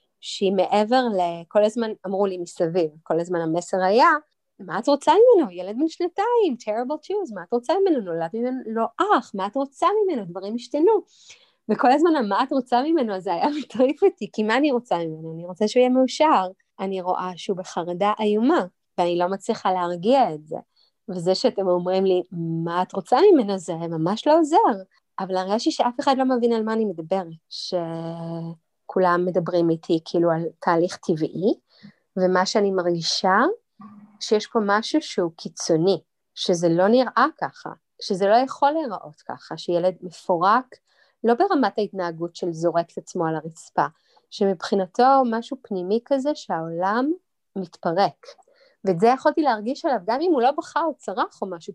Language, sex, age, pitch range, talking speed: Hebrew, female, 30-49, 180-260 Hz, 165 wpm